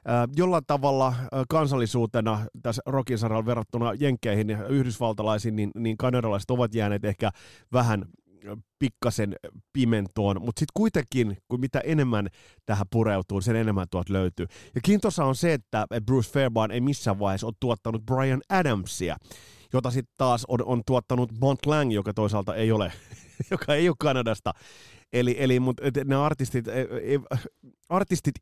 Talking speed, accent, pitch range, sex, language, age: 145 wpm, native, 100-135 Hz, male, Finnish, 30-49